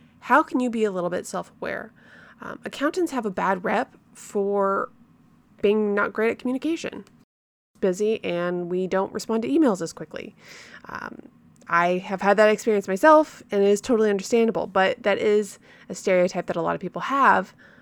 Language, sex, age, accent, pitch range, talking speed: English, female, 20-39, American, 180-215 Hz, 170 wpm